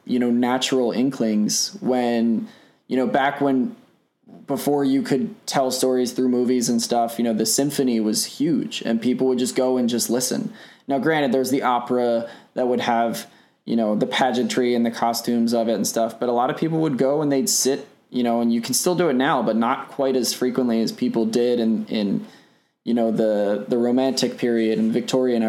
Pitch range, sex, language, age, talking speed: 115-130 Hz, male, English, 20-39, 205 wpm